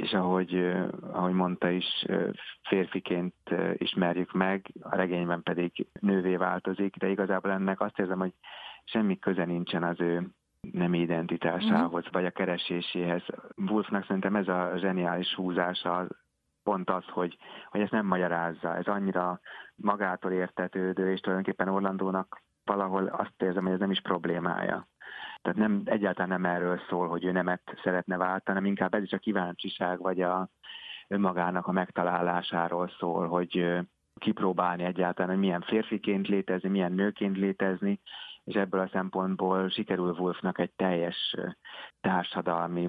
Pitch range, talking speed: 90-95 Hz, 135 wpm